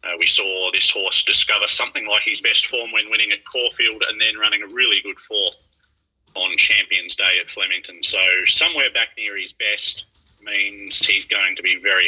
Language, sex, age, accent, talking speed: English, male, 30-49, Australian, 195 wpm